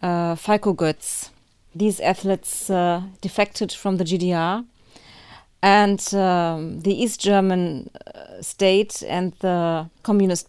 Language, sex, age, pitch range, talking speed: English, female, 40-59, 170-205 Hz, 115 wpm